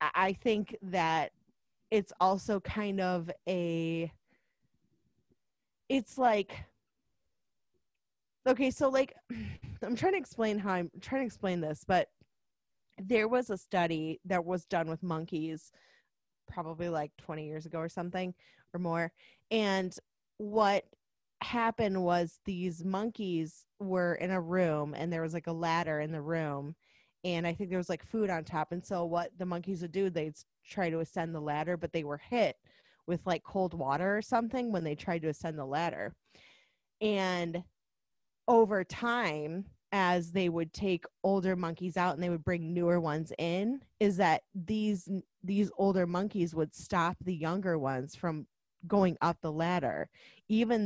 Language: English